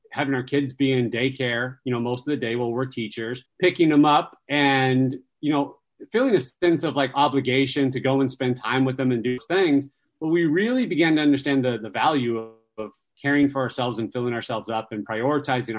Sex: male